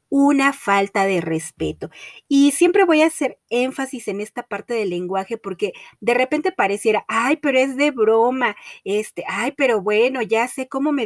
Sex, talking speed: female, 175 wpm